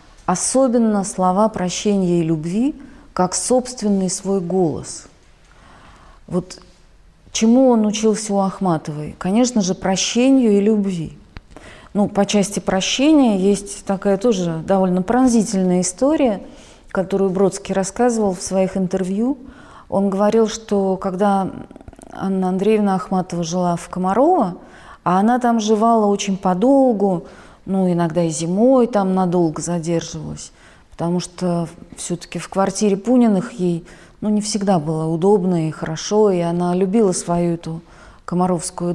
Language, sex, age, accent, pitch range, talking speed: Russian, female, 30-49, native, 180-220 Hz, 120 wpm